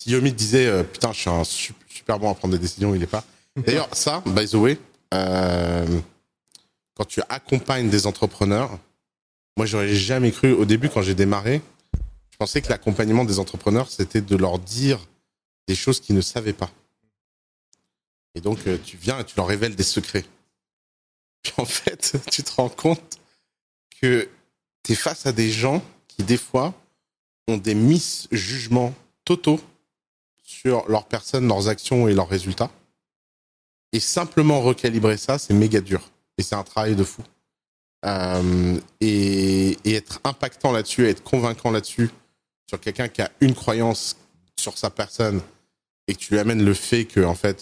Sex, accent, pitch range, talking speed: male, French, 95-120 Hz, 170 wpm